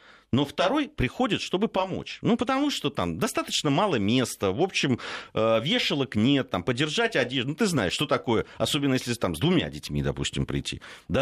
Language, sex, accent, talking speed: Russian, male, native, 175 wpm